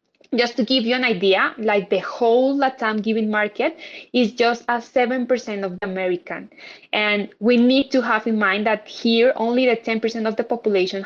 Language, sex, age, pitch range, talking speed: English, female, 20-39, 195-230 Hz, 195 wpm